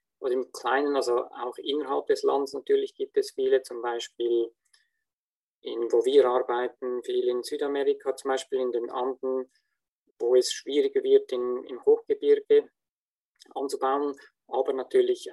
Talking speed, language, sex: 135 wpm, German, male